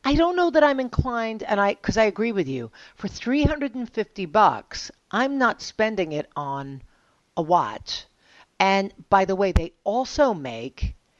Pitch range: 155-240 Hz